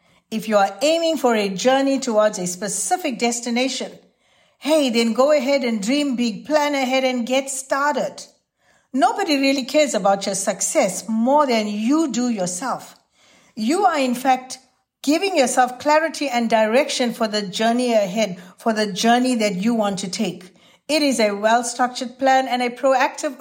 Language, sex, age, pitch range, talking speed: English, female, 60-79, 215-275 Hz, 160 wpm